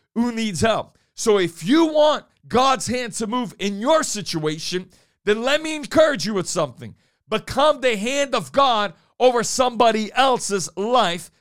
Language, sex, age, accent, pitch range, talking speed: English, male, 50-69, American, 200-270 Hz, 160 wpm